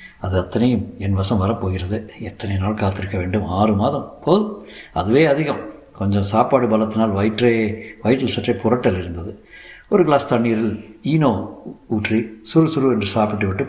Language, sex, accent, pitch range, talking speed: Tamil, male, native, 100-115 Hz, 135 wpm